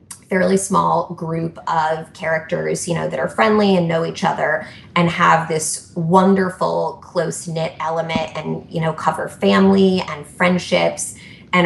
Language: English